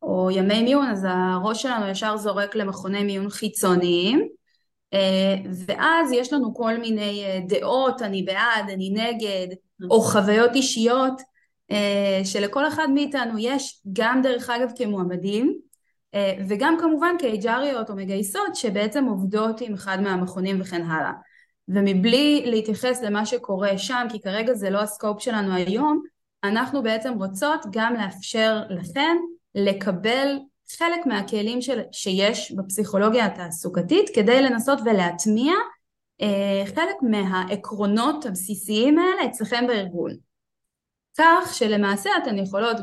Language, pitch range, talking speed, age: Hebrew, 195-260 Hz, 115 wpm, 20-39